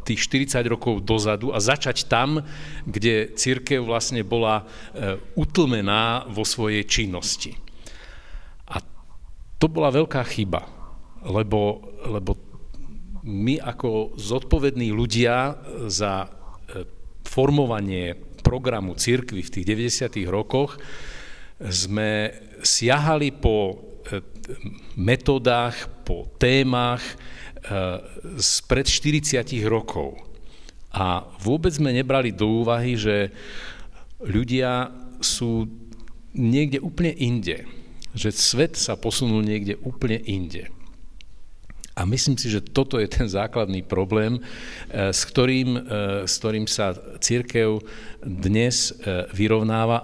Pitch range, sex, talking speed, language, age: 100-125 Hz, male, 95 wpm, Slovak, 50-69